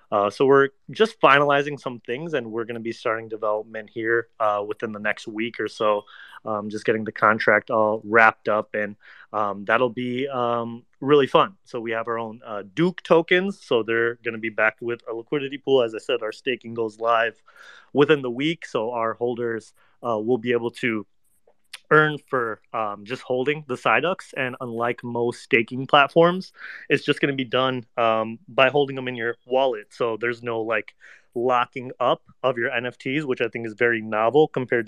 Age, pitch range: 30-49, 110-130 Hz